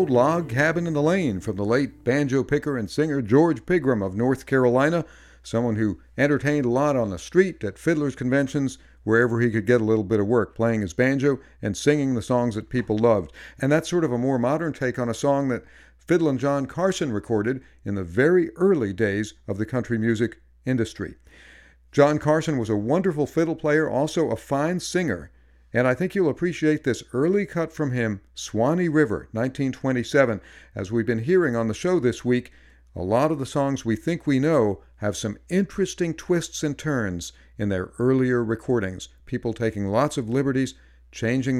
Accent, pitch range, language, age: American, 110-145 Hz, English, 50-69